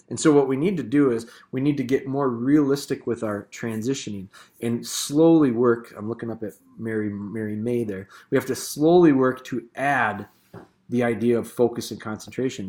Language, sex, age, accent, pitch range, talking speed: English, male, 30-49, American, 110-145 Hz, 195 wpm